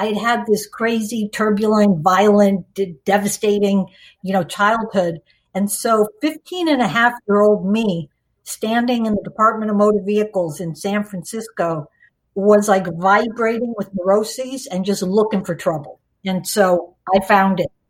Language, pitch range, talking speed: English, 180-220 Hz, 150 wpm